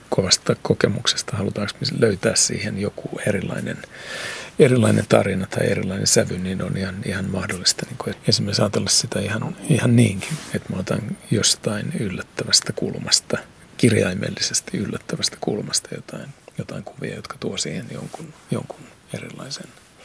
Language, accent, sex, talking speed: Finnish, native, male, 125 wpm